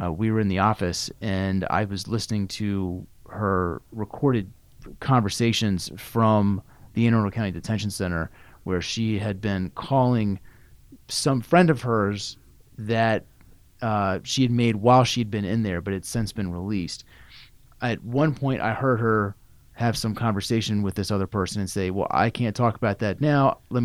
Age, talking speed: 30-49, 170 wpm